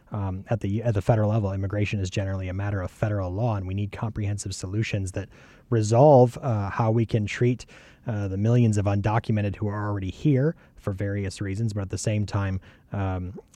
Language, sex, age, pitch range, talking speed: English, male, 30-49, 100-115 Hz, 200 wpm